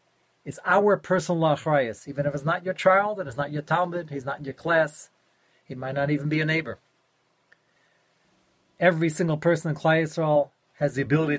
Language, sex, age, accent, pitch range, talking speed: English, male, 40-59, American, 135-160 Hz, 190 wpm